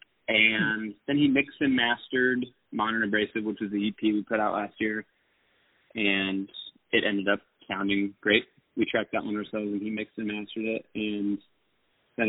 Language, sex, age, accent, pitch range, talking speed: English, male, 30-49, American, 105-120 Hz, 175 wpm